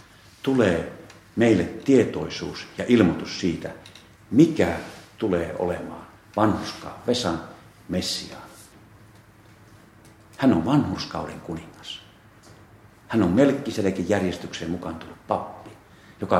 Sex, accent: male, native